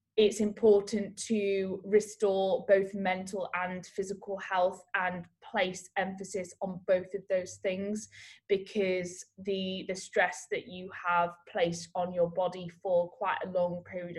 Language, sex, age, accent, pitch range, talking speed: English, female, 10-29, British, 180-210 Hz, 140 wpm